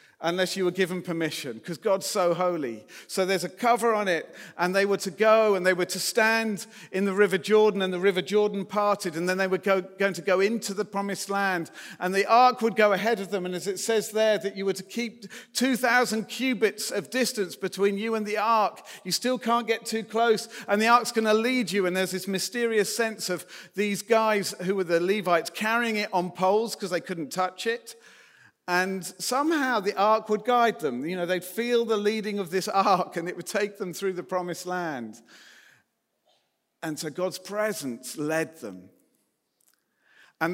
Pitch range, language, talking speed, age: 175-220 Hz, English, 205 wpm, 50-69